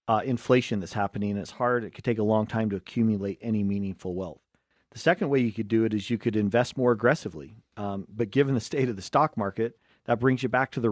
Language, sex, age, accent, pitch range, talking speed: English, male, 40-59, American, 105-125 Hz, 245 wpm